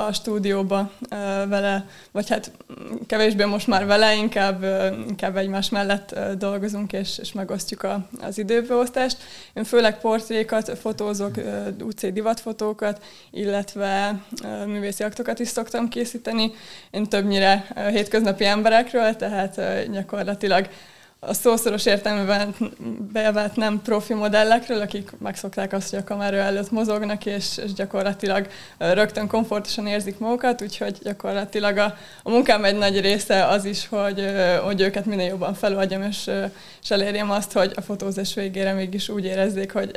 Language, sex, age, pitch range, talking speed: Hungarian, female, 20-39, 195-215 Hz, 130 wpm